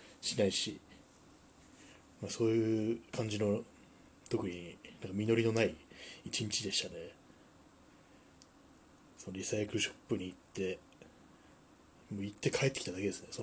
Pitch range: 90-110 Hz